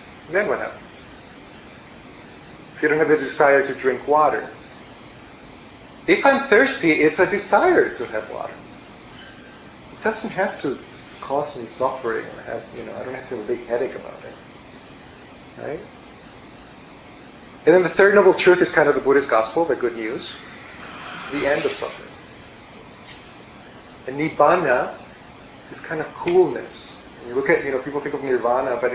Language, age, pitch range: English, 30-49, 130-170 Hz